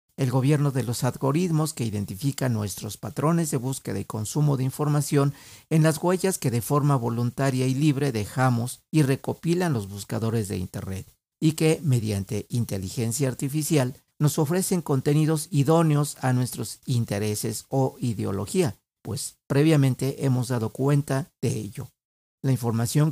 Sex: male